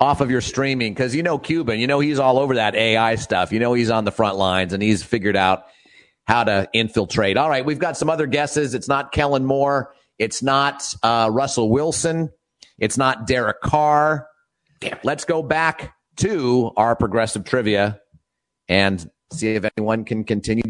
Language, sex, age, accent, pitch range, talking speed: English, male, 40-59, American, 105-145 Hz, 185 wpm